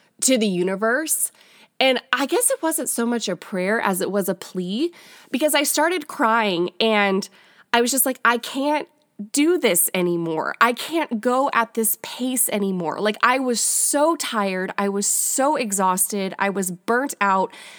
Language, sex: English, female